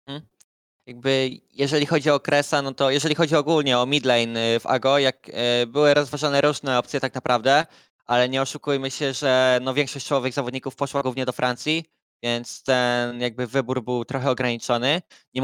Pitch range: 130-150 Hz